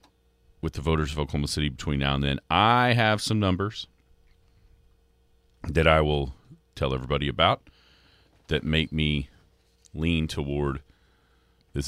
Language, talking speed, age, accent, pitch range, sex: English, 130 wpm, 40-59, American, 75-95 Hz, male